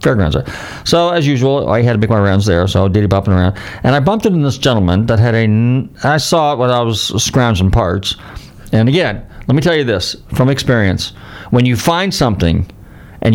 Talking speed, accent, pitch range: 215 wpm, American, 95-120 Hz